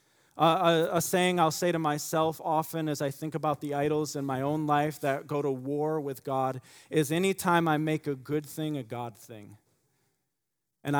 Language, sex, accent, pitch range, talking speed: English, male, American, 140-165 Hz, 195 wpm